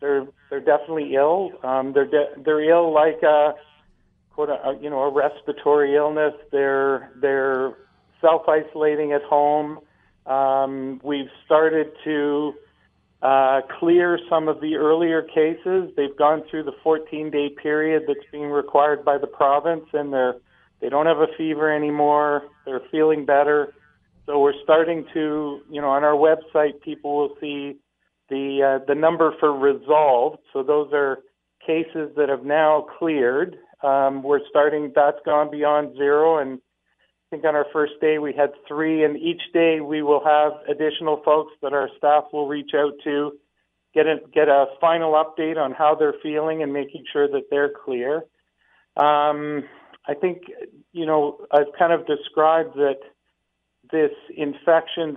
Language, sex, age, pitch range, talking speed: English, male, 50-69, 145-155 Hz, 160 wpm